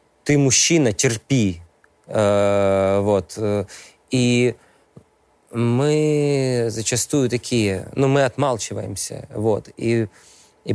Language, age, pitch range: Russian, 20-39, 105-125 Hz